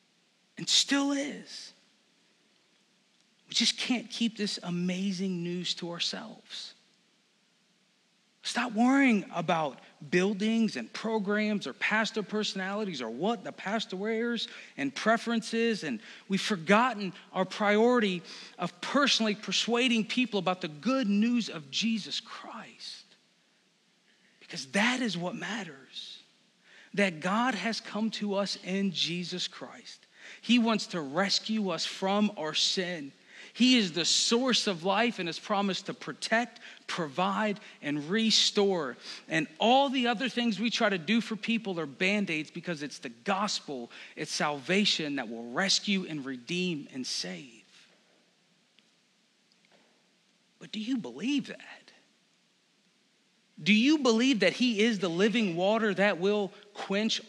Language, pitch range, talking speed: English, 185-225 Hz, 130 wpm